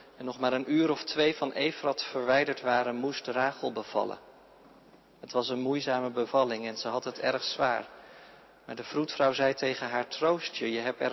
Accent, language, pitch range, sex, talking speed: Dutch, Dutch, 120-145 Hz, male, 190 wpm